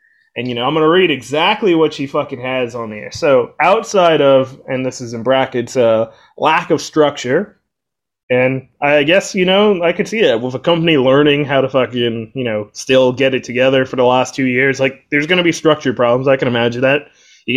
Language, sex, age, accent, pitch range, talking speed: English, male, 20-39, American, 125-150 Hz, 220 wpm